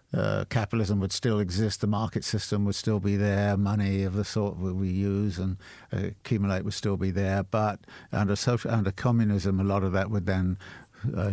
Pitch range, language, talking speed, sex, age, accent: 95-110 Hz, English, 195 wpm, male, 60-79, British